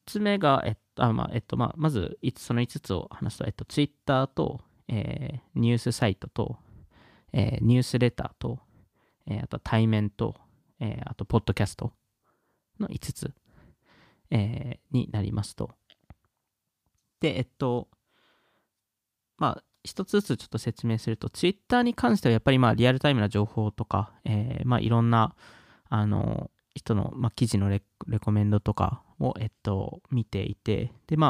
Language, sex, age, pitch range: Japanese, male, 20-39, 110-145 Hz